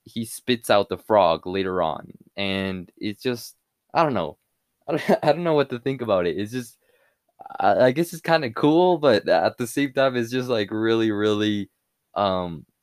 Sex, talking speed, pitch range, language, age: male, 195 wpm, 100-125 Hz, English, 20-39